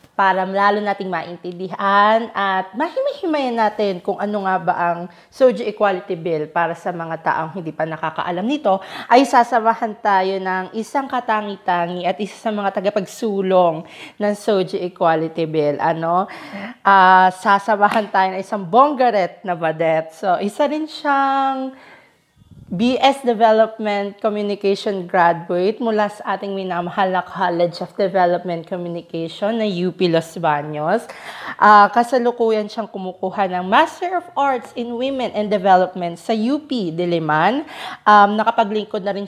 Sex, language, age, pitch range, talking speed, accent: female, Filipino, 20-39, 185-240 Hz, 135 wpm, native